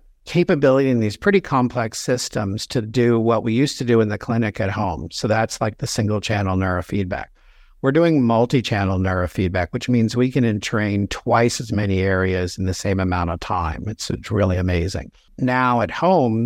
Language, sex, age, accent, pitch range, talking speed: English, male, 60-79, American, 100-120 Hz, 190 wpm